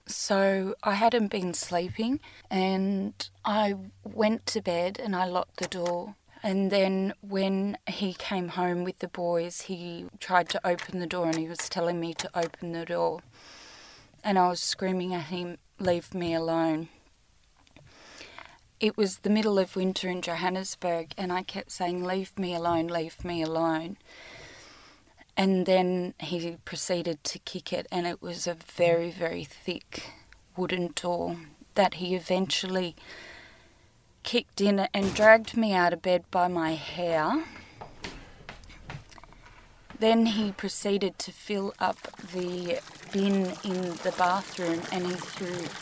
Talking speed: 145 wpm